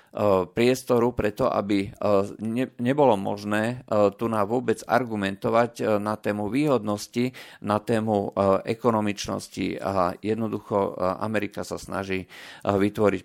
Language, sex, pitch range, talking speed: Slovak, male, 100-120 Hz, 95 wpm